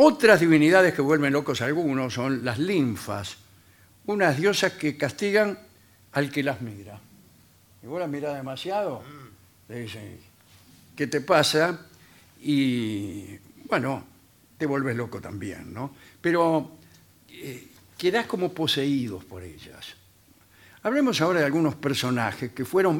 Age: 60-79